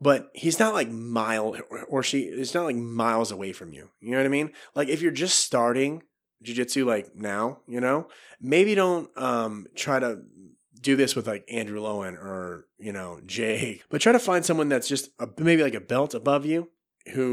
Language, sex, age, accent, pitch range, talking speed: English, male, 30-49, American, 115-145 Hz, 210 wpm